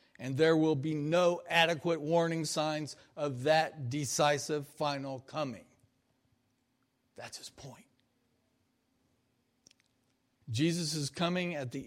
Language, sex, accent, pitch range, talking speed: English, male, American, 140-195 Hz, 100 wpm